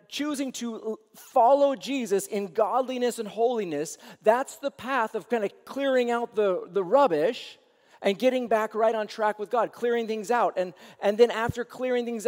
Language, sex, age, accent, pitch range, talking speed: English, male, 40-59, American, 180-245 Hz, 175 wpm